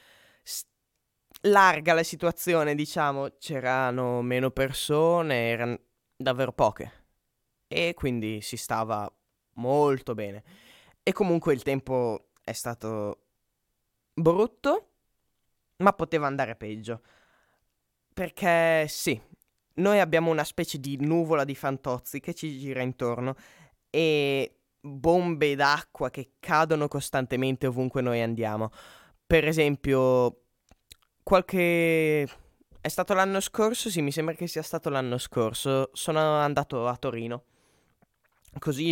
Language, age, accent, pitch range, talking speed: Italian, 20-39, native, 125-160 Hz, 110 wpm